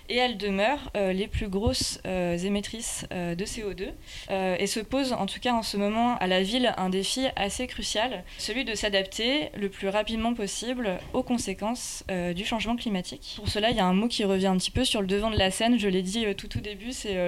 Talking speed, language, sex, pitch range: 240 wpm, French, female, 190-230 Hz